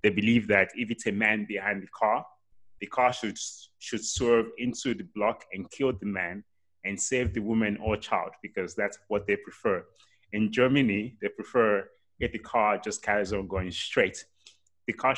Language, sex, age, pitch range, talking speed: English, male, 20-39, 105-135 Hz, 185 wpm